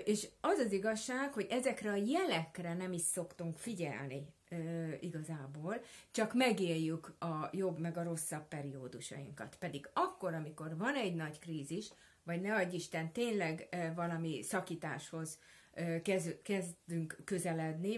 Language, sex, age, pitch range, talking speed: Hungarian, female, 30-49, 160-195 Hz, 120 wpm